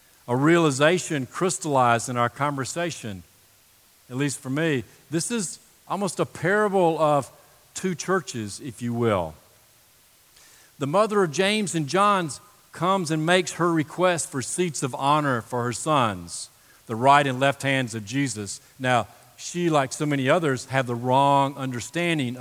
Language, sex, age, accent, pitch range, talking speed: English, male, 50-69, American, 120-165 Hz, 150 wpm